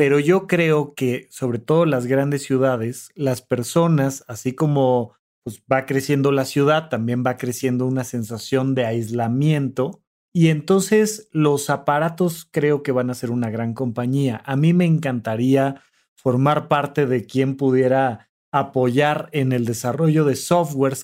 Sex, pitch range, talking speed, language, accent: male, 130-175 Hz, 145 wpm, Spanish, Mexican